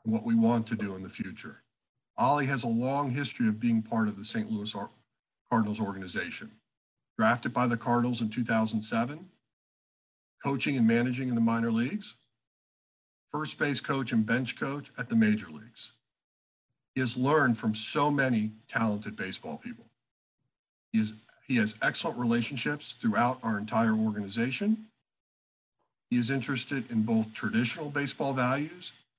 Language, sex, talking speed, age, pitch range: English, male, 150 wpm, 50-69, 110-130 Hz